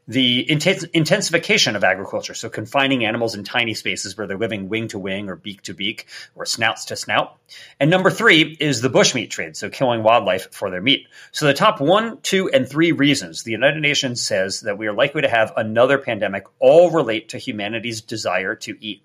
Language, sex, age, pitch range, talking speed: English, male, 30-49, 110-155 Hz, 200 wpm